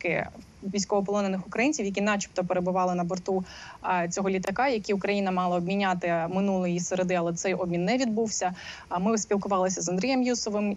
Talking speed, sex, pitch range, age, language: 140 wpm, female, 185-210 Hz, 20-39, Ukrainian